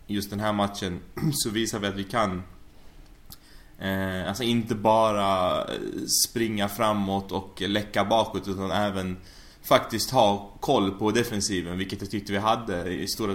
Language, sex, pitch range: Swedish, male, 95-110 Hz